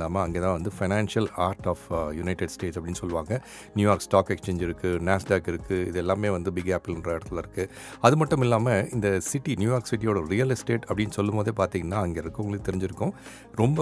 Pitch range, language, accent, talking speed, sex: 90-125 Hz, Tamil, native, 175 wpm, male